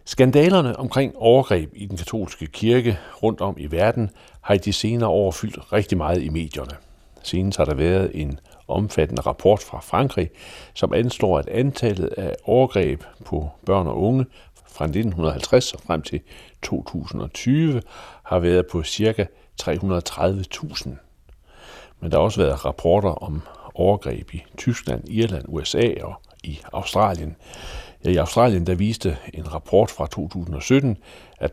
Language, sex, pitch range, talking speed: Danish, male, 80-115 Hz, 145 wpm